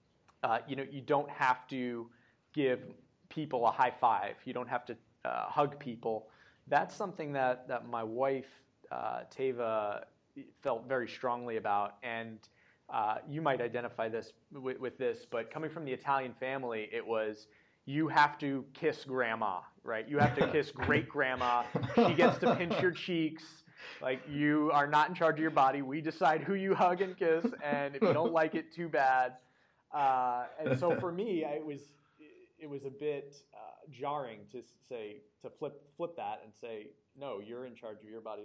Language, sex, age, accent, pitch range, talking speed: English, male, 30-49, American, 115-145 Hz, 185 wpm